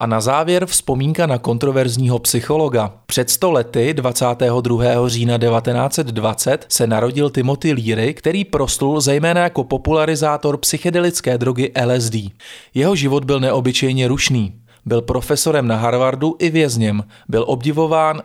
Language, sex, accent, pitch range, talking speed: Czech, male, native, 120-155 Hz, 120 wpm